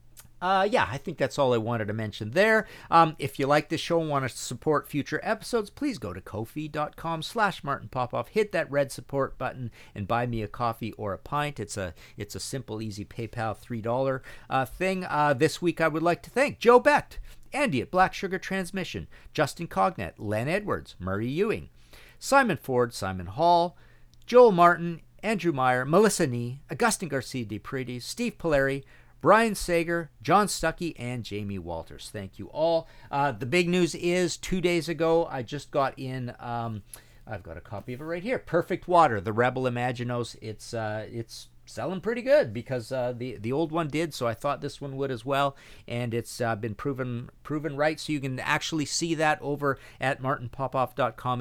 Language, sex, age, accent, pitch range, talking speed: English, male, 50-69, American, 110-160 Hz, 185 wpm